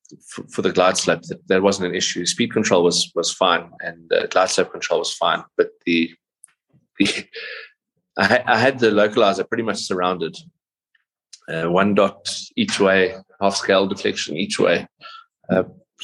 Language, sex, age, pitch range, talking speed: English, male, 30-49, 95-130 Hz, 155 wpm